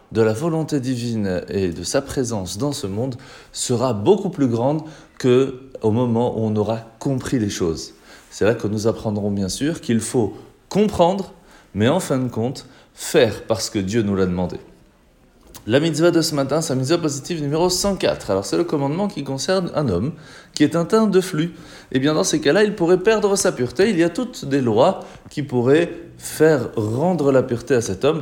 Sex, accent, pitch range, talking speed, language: male, French, 115-165 Hz, 200 wpm, French